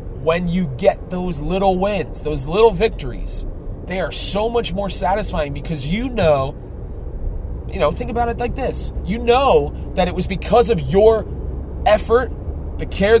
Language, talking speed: English, 165 wpm